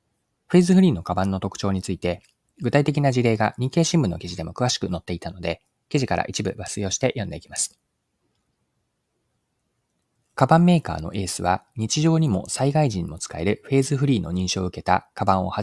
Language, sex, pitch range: Japanese, male, 90-135 Hz